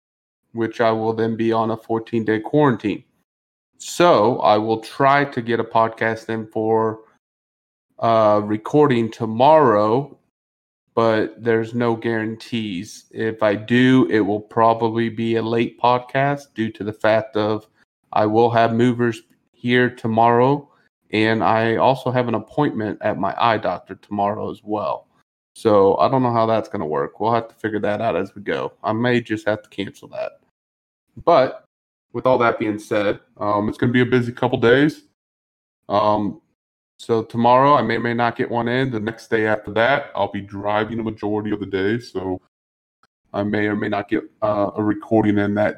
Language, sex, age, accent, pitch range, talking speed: English, male, 30-49, American, 105-120 Hz, 180 wpm